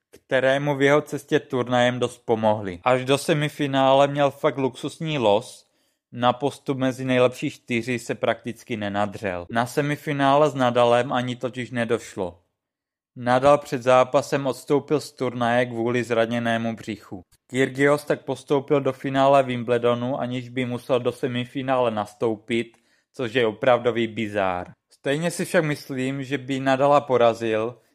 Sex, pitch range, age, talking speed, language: male, 115-140 Hz, 20-39, 135 wpm, Czech